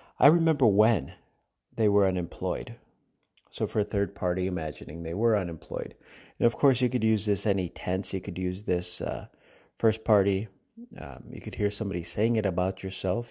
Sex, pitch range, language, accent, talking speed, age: male, 90-110 Hz, English, American, 180 wpm, 50-69